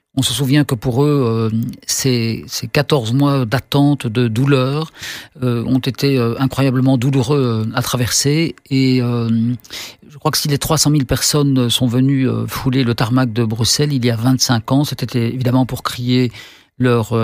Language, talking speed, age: French, 165 wpm, 50-69